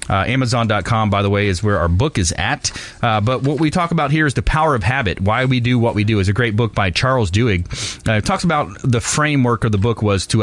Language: English